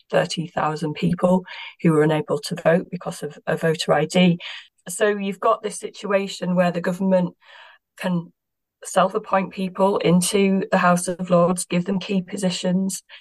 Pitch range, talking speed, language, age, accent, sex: 170-195 Hz, 145 wpm, English, 30-49, British, female